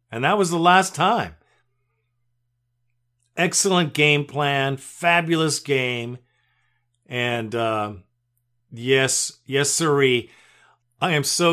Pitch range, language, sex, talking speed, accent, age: 120-150 Hz, English, male, 100 wpm, American, 50-69